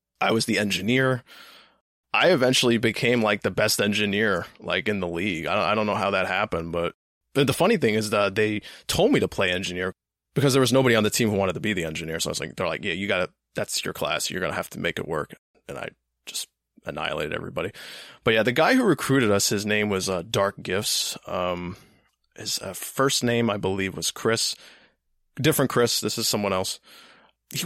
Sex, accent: male, American